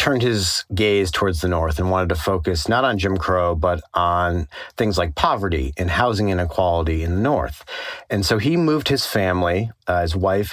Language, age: English, 40-59